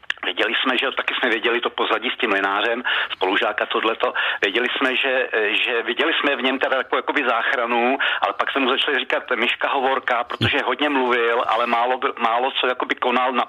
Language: Czech